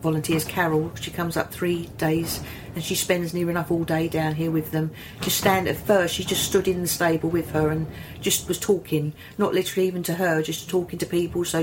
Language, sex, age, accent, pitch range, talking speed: English, female, 40-59, British, 155-175 Hz, 225 wpm